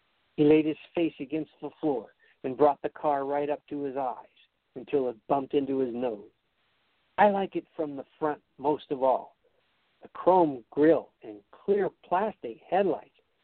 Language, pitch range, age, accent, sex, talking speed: English, 140-205 Hz, 60-79, American, male, 170 wpm